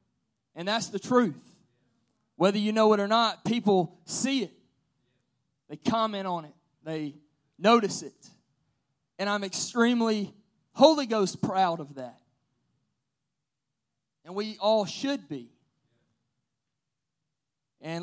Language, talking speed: English, 115 wpm